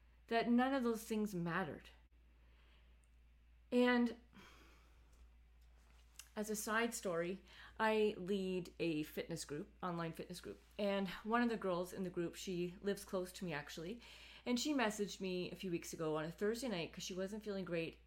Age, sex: 30-49, female